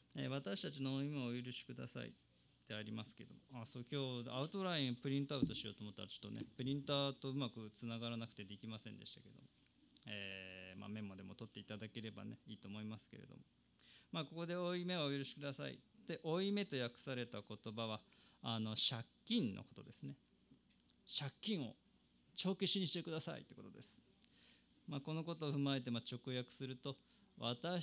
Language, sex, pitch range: Japanese, male, 110-145 Hz